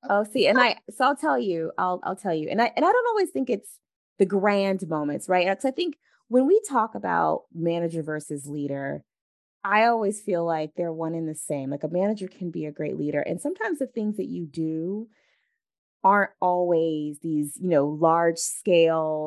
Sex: female